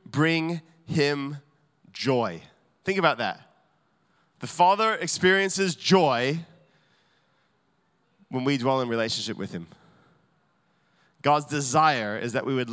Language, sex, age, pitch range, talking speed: English, male, 20-39, 145-180 Hz, 110 wpm